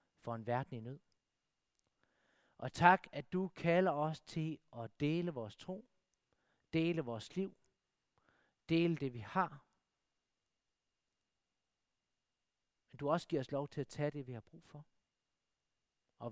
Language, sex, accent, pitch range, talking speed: Danish, male, native, 120-185 Hz, 140 wpm